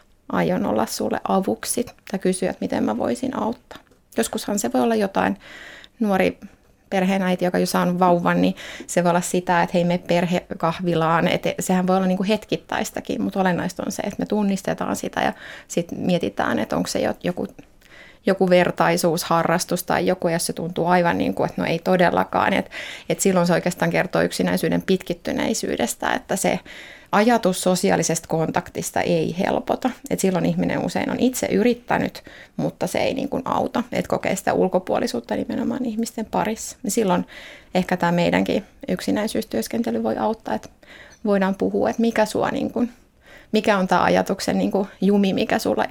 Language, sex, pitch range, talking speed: Finnish, female, 175-225 Hz, 160 wpm